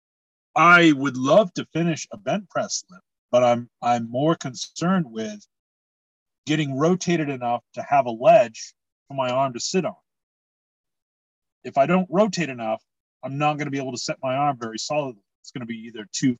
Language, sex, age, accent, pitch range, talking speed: English, male, 40-59, American, 115-165 Hz, 180 wpm